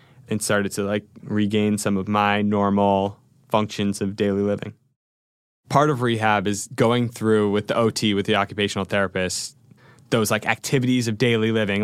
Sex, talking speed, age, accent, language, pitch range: male, 160 wpm, 20-39, American, English, 105-130 Hz